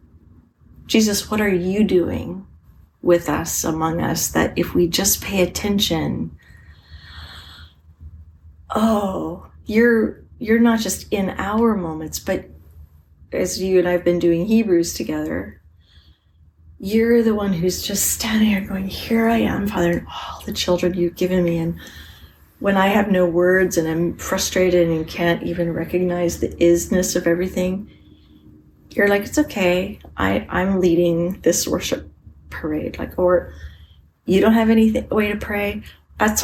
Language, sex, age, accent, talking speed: English, female, 30-49, American, 145 wpm